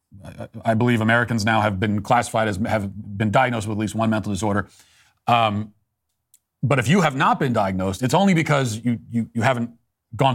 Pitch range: 100-130 Hz